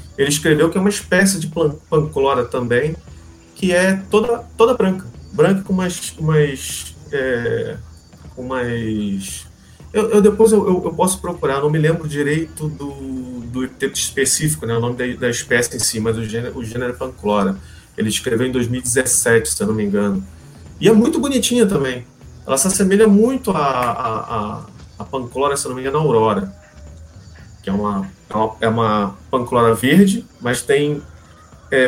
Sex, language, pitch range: male, Portuguese, 110-175 Hz